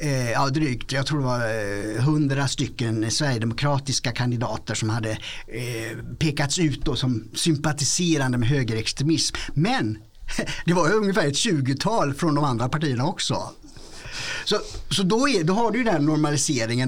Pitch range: 125-160 Hz